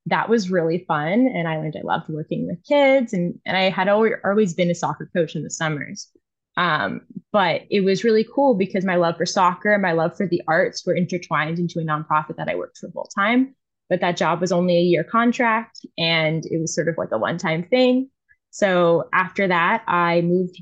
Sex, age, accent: female, 20-39, American